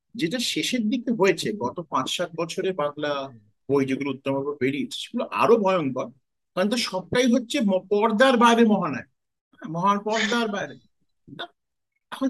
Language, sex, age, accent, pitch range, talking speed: Bengali, male, 50-69, native, 180-240 Hz, 135 wpm